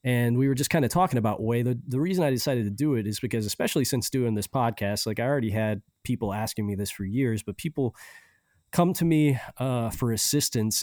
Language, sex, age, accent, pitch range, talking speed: English, male, 20-39, American, 105-125 Hz, 235 wpm